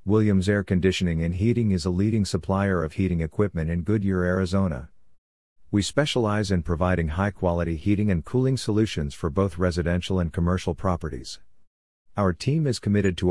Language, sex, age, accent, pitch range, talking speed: English, male, 50-69, American, 85-105 Hz, 160 wpm